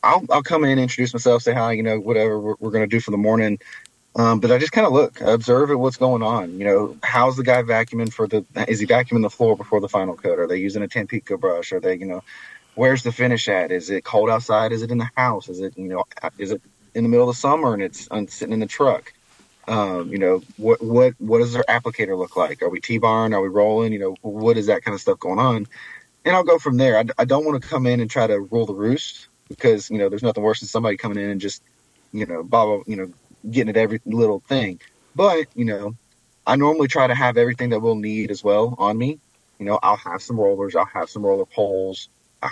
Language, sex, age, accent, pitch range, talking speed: English, male, 20-39, American, 105-125 Hz, 265 wpm